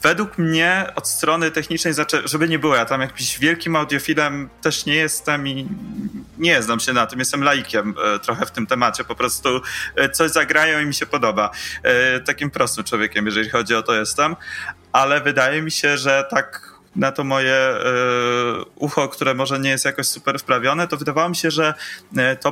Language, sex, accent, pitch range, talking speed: Polish, male, native, 120-140 Hz, 180 wpm